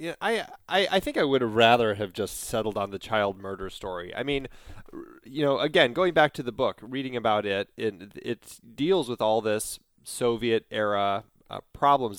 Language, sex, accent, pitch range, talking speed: English, male, American, 100-125 Hz, 195 wpm